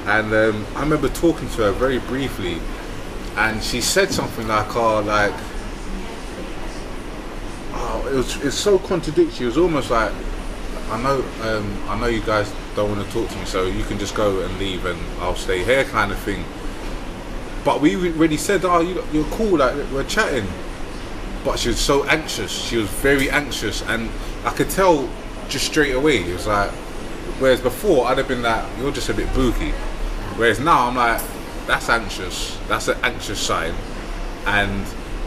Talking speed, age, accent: 180 wpm, 20-39, British